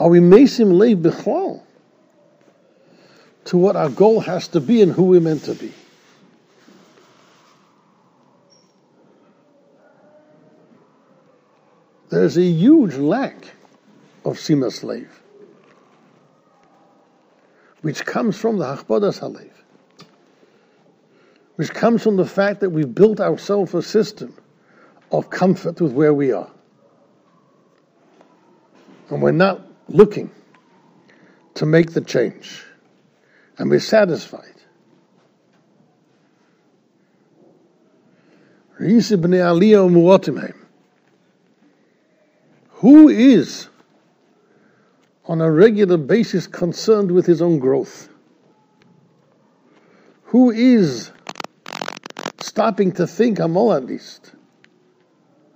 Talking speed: 80 wpm